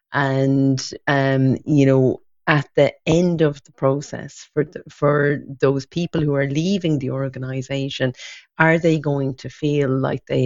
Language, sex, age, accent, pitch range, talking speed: English, female, 40-59, Irish, 130-150 Hz, 155 wpm